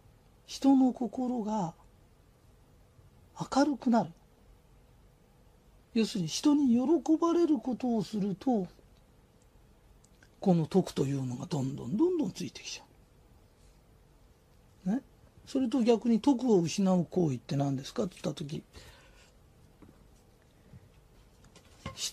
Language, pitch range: Japanese, 160-245 Hz